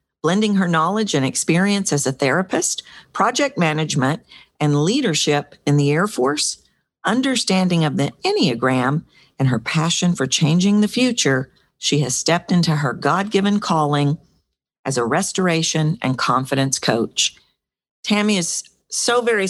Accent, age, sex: American, 50-69, female